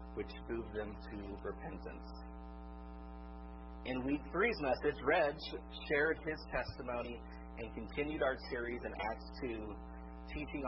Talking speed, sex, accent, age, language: 120 wpm, male, American, 40-59, English